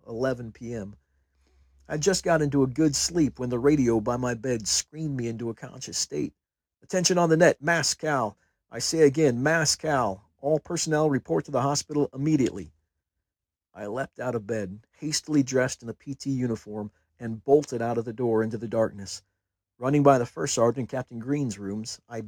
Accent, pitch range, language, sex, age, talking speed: American, 100-140 Hz, English, male, 50-69, 180 wpm